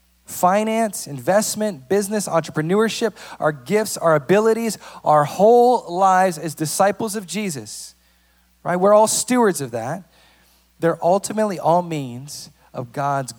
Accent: American